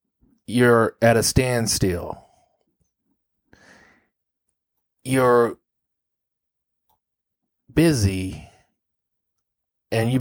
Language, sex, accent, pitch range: English, male, American, 100-120 Hz